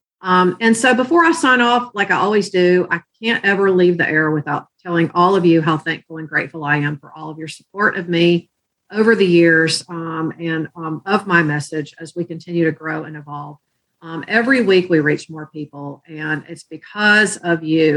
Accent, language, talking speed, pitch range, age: American, English, 210 wpm, 155-195 Hz, 50-69